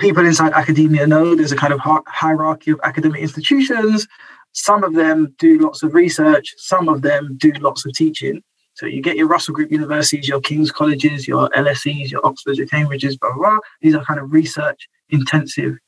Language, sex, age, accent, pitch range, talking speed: English, male, 20-39, British, 145-200 Hz, 180 wpm